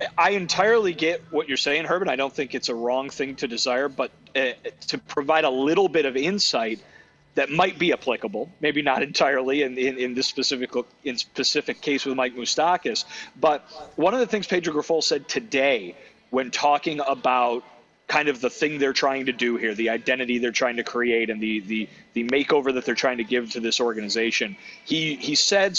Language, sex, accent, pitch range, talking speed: English, male, American, 120-150 Hz, 200 wpm